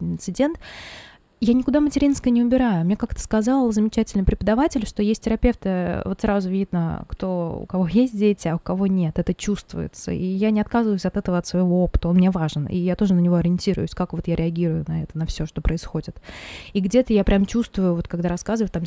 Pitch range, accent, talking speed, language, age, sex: 175-215 Hz, native, 205 wpm, Russian, 20-39, female